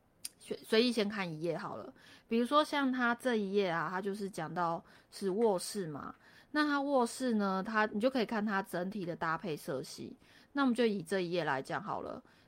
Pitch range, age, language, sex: 170-225 Hz, 20-39, Chinese, female